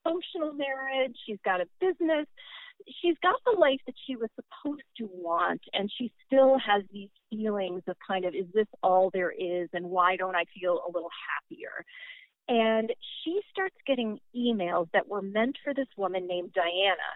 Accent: American